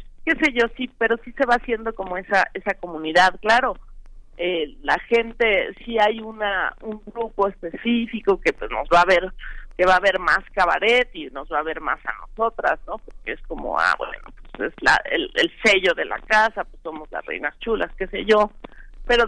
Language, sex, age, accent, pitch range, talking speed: Spanish, female, 50-69, Mexican, 180-235 Hz, 210 wpm